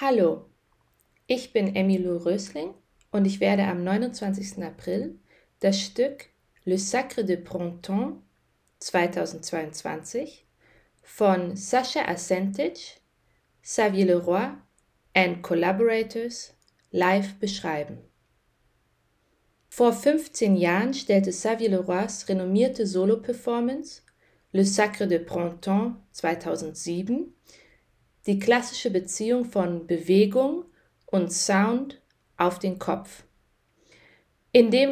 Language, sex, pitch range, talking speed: German, female, 185-240 Hz, 90 wpm